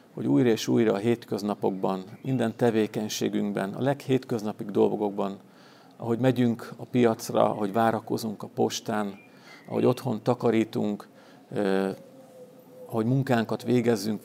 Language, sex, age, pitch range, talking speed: Hungarian, male, 50-69, 105-120 Hz, 110 wpm